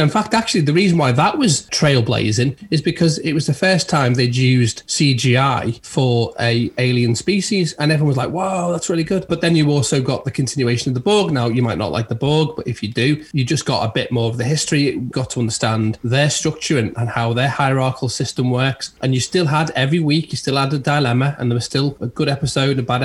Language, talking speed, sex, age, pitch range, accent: English, 240 wpm, male, 30-49, 120-145 Hz, British